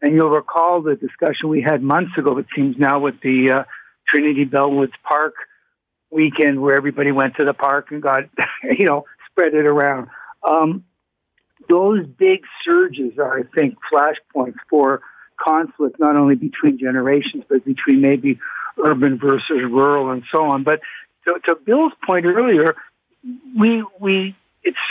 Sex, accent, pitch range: male, American, 145-230 Hz